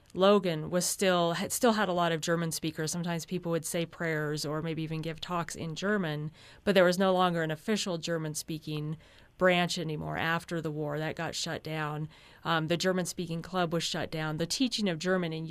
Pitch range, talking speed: 160-185 Hz, 200 wpm